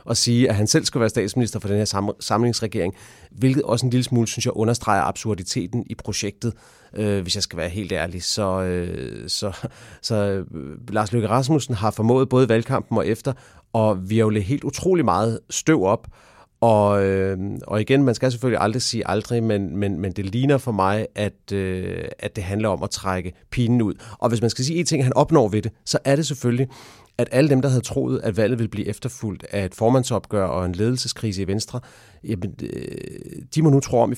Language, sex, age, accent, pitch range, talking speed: English, male, 30-49, Danish, 100-125 Hz, 205 wpm